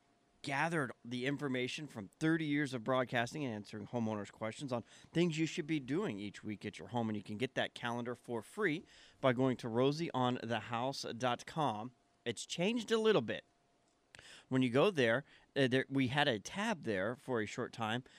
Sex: male